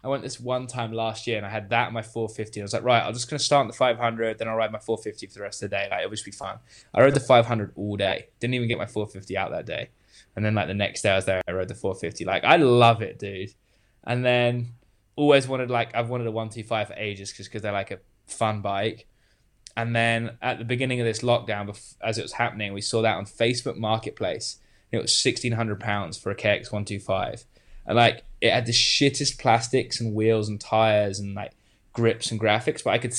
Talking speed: 245 wpm